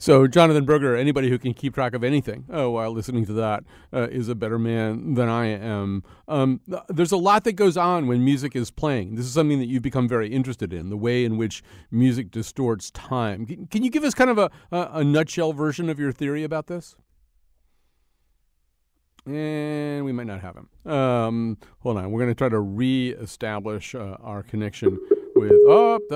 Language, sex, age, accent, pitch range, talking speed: English, male, 40-59, American, 110-140 Hz, 205 wpm